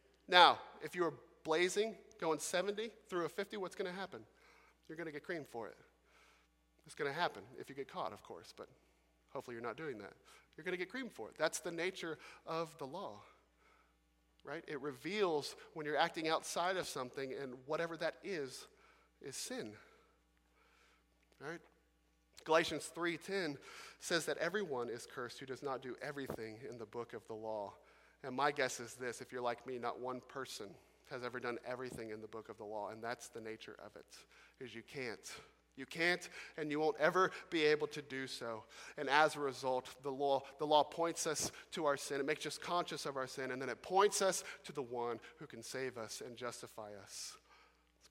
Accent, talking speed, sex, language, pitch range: American, 200 wpm, male, English, 120-165 Hz